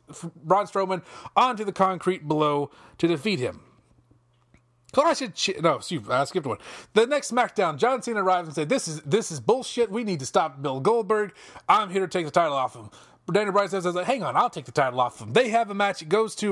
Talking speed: 230 wpm